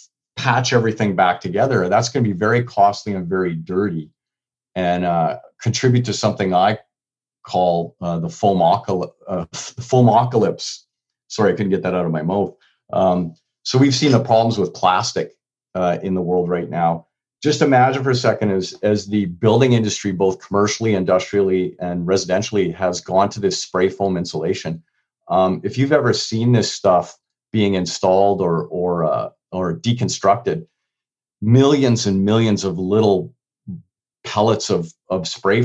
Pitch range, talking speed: 90-115 Hz, 160 wpm